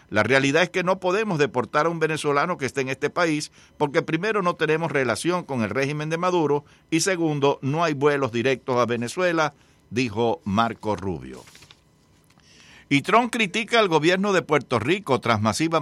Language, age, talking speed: English, 60-79, 175 wpm